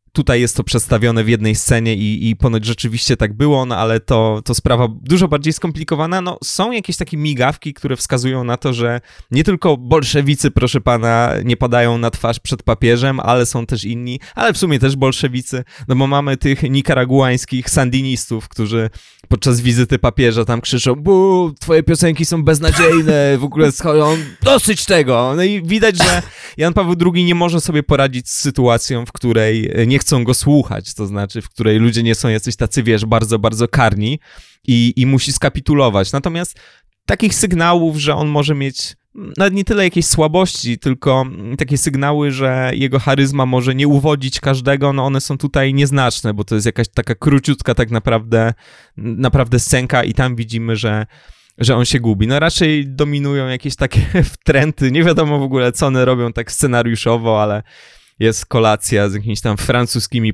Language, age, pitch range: Polish, 20-39, 115-145 Hz